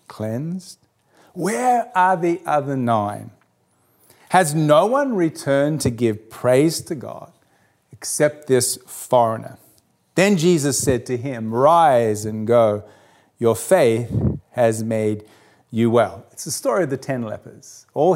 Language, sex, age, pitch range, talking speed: English, male, 40-59, 115-145 Hz, 130 wpm